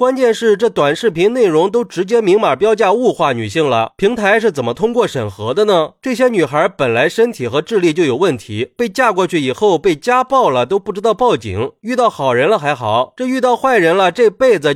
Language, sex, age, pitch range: Chinese, male, 30-49, 150-245 Hz